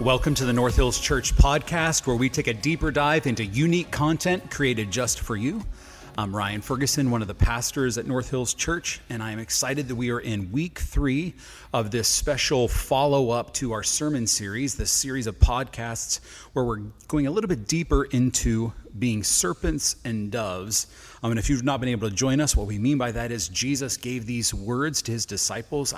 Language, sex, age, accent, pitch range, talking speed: English, male, 30-49, American, 110-140 Hz, 205 wpm